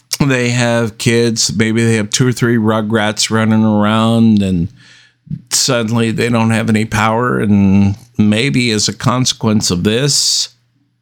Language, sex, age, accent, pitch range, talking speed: English, male, 50-69, American, 115-130 Hz, 140 wpm